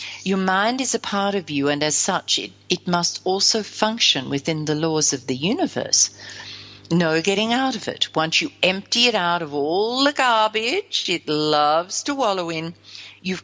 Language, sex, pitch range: English, female, 150-210 Hz